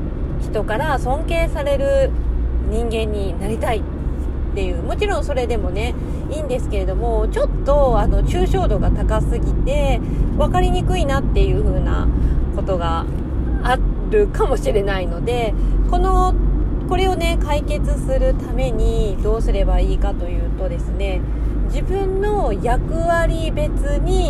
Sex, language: female, Japanese